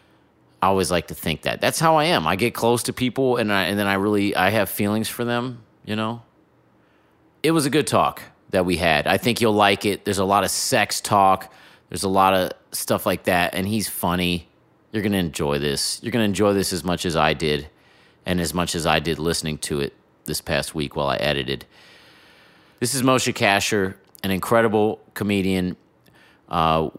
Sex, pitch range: male, 85-105 Hz